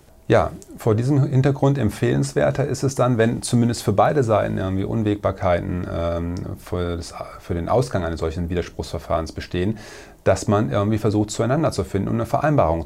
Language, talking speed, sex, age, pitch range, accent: German, 155 wpm, male, 40-59, 95-120 Hz, German